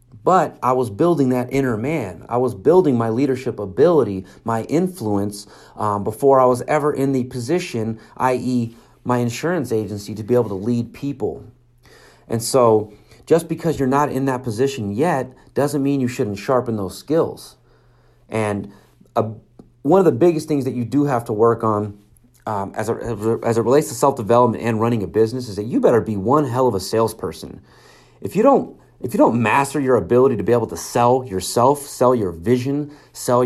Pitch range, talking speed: 110-135 Hz, 185 wpm